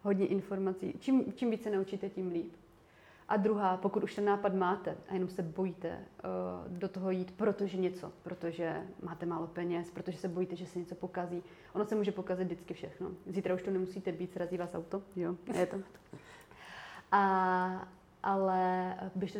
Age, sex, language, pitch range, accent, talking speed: 30-49, female, Czech, 185-200 Hz, native, 175 wpm